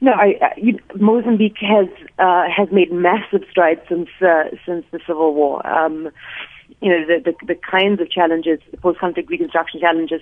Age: 30-49